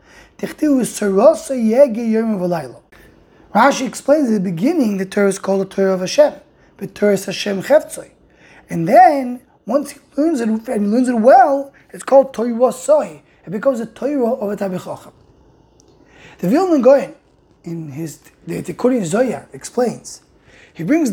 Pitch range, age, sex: 195-270 Hz, 20-39, male